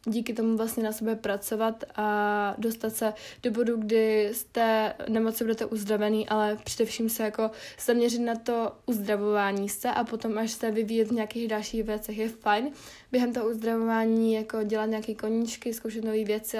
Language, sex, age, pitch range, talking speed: Czech, female, 20-39, 215-235 Hz, 165 wpm